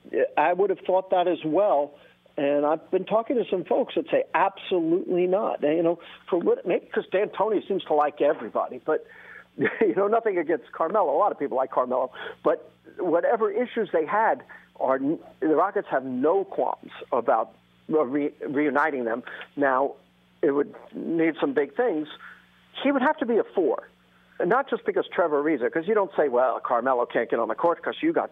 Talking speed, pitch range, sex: 195 wpm, 140-225 Hz, male